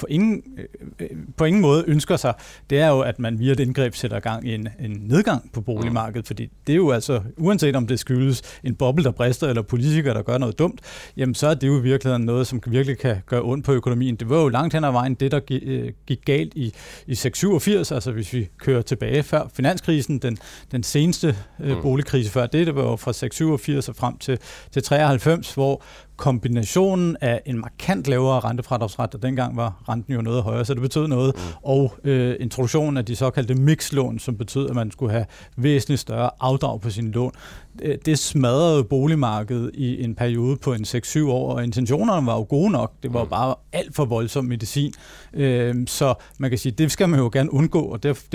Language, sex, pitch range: Danish, male, 120-145 Hz